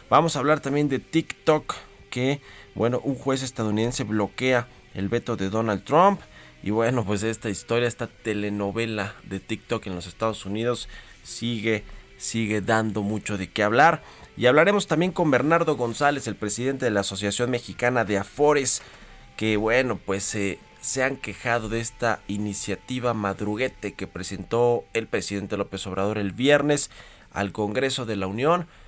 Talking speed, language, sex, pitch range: 155 wpm, Spanish, male, 100-125 Hz